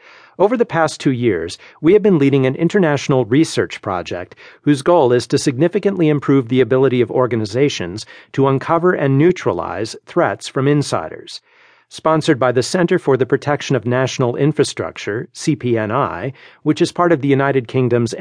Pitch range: 120-155 Hz